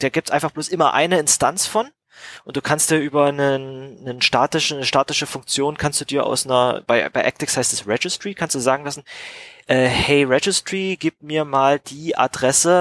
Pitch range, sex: 120-145 Hz, male